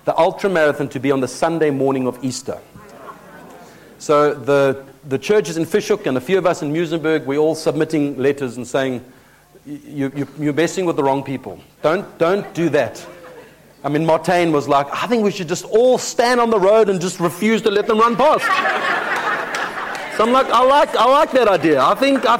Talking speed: 205 wpm